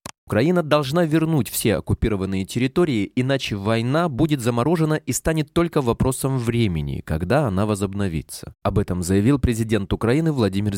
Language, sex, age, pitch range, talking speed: Russian, male, 20-39, 100-145 Hz, 135 wpm